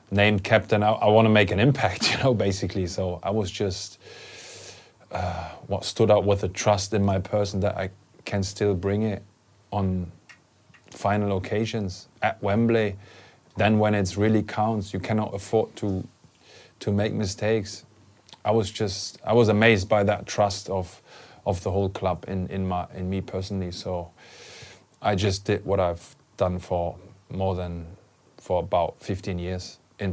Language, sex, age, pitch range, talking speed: English, male, 20-39, 95-110 Hz, 165 wpm